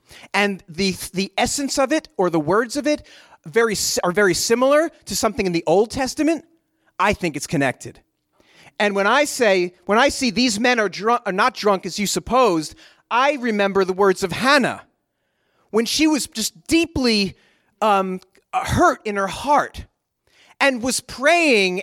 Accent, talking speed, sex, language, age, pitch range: American, 170 wpm, male, English, 30-49, 200-300 Hz